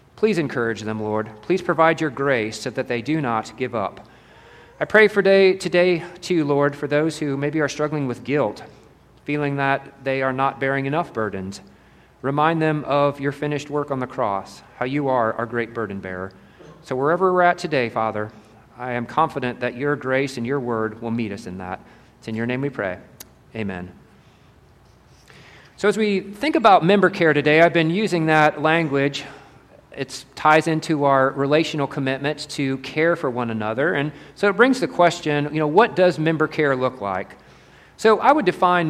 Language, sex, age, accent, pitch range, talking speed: English, male, 40-59, American, 125-170 Hz, 190 wpm